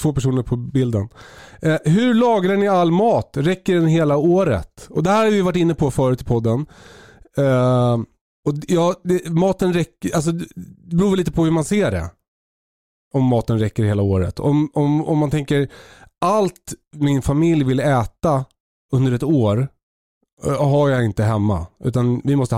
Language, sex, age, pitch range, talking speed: Swedish, male, 30-49, 125-165 Hz, 175 wpm